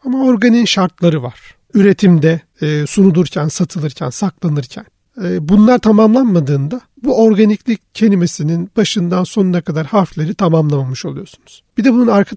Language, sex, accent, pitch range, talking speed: Turkish, male, native, 165-195 Hz, 110 wpm